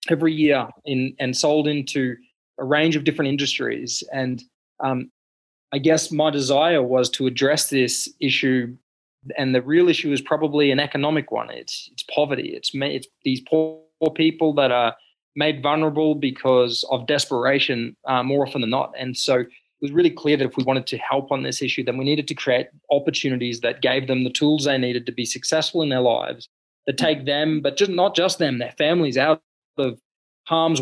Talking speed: 195 wpm